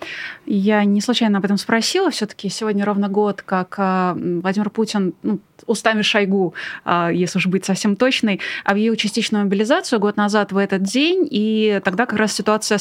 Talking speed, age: 160 wpm, 20-39